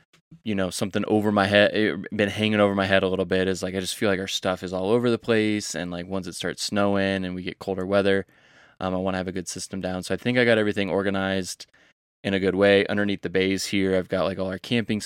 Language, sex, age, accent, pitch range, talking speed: English, male, 20-39, American, 95-105 Hz, 270 wpm